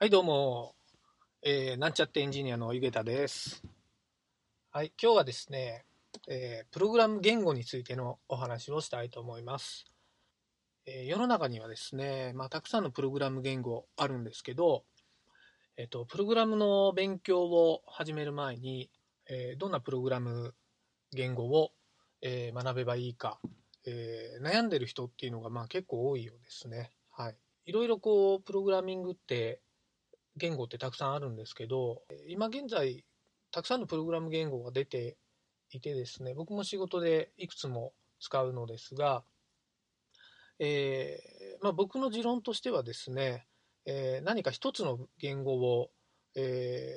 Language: Japanese